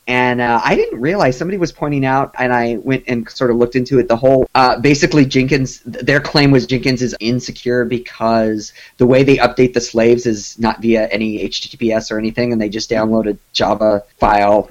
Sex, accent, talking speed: male, American, 205 wpm